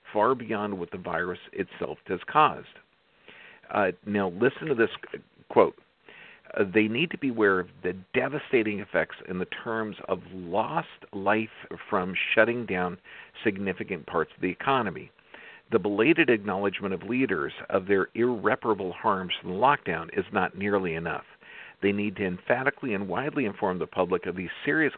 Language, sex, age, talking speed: English, male, 50-69, 155 wpm